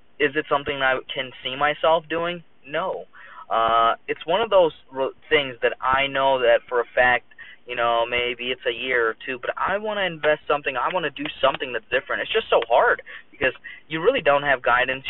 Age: 20-39